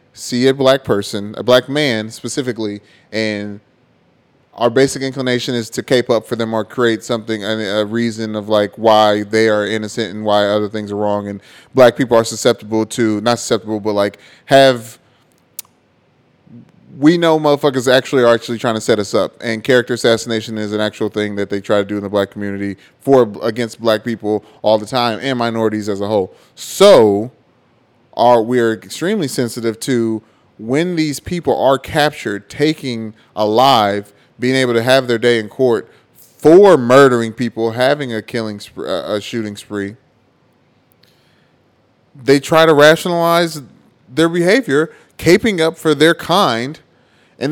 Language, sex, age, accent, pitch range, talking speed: English, male, 30-49, American, 110-135 Hz, 165 wpm